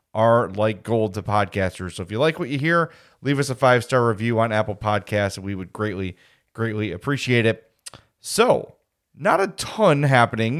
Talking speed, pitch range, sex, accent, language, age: 175 wpm, 110-135 Hz, male, American, English, 30-49